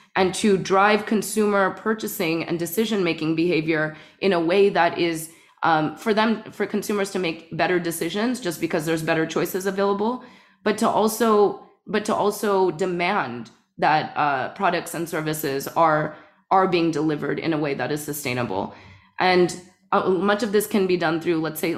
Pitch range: 160-200 Hz